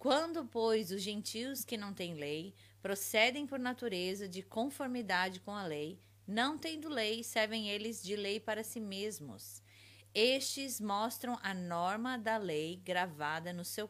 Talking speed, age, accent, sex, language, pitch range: 150 wpm, 20-39, Brazilian, female, Portuguese, 160-235 Hz